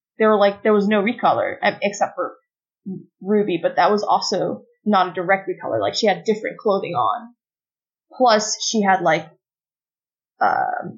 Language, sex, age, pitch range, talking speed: English, female, 20-39, 185-225 Hz, 160 wpm